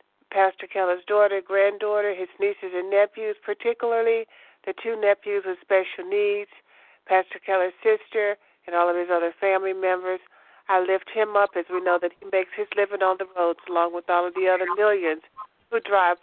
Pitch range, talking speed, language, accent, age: 185-215 Hz, 180 wpm, English, American, 50-69